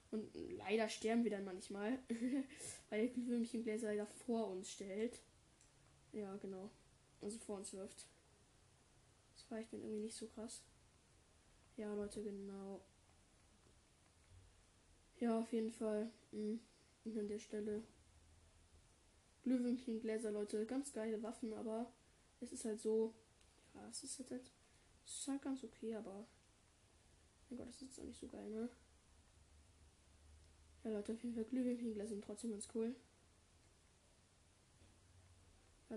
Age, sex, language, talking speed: 10-29, female, German, 135 wpm